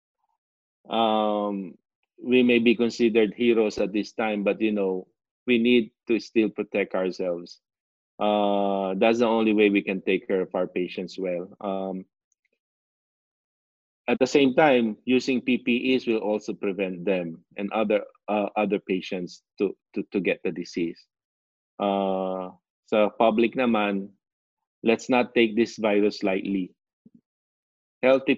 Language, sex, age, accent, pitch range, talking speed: English, male, 20-39, Filipino, 95-110 Hz, 135 wpm